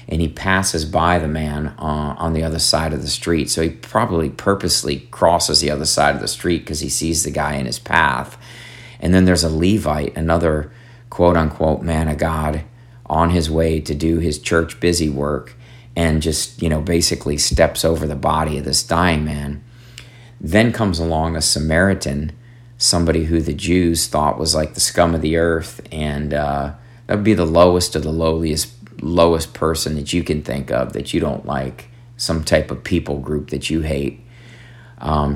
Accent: American